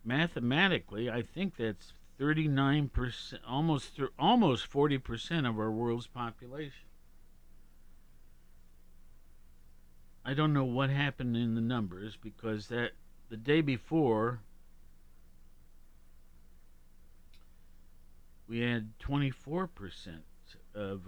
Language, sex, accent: English, male, American